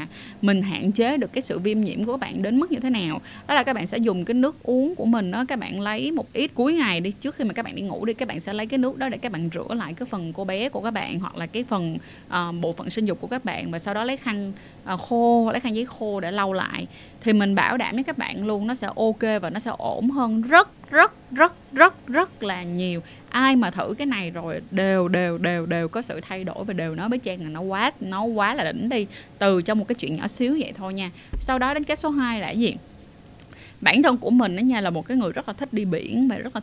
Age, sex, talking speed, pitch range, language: 20-39, female, 290 wpm, 190-255 Hz, Vietnamese